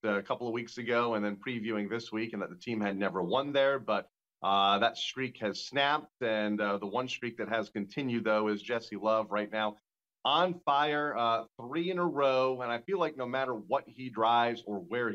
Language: English